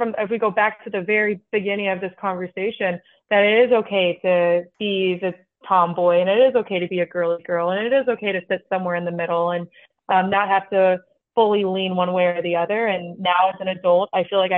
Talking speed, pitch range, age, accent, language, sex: 240 wpm, 180-205 Hz, 20-39, American, English, female